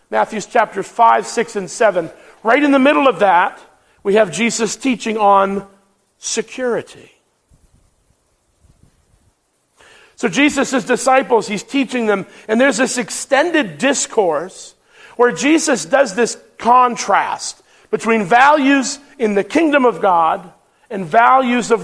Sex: male